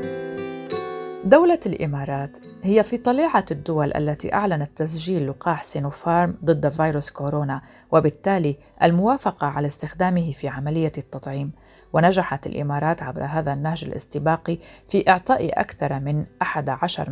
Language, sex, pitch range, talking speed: Arabic, female, 145-195 Hz, 110 wpm